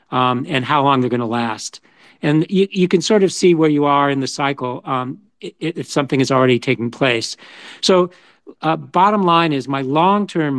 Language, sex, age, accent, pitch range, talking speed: English, male, 50-69, American, 130-165 Hz, 205 wpm